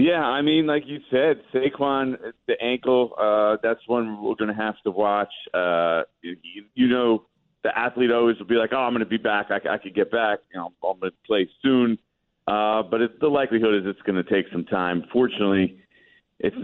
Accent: American